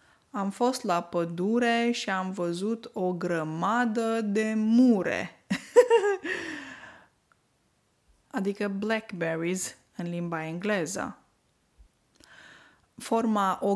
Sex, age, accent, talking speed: female, 20-39, native, 80 wpm